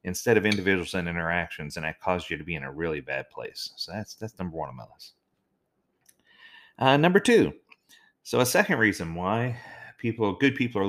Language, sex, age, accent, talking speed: English, male, 30-49, American, 200 wpm